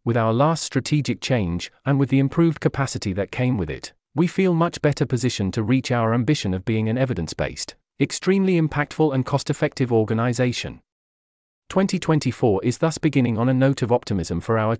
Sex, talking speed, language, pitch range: male, 175 wpm, English, 110-140 Hz